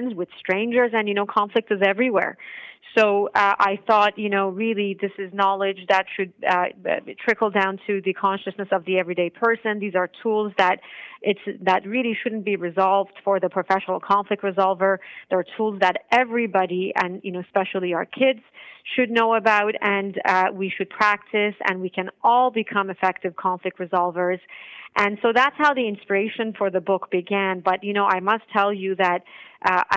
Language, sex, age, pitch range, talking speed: English, female, 40-59, 180-205 Hz, 180 wpm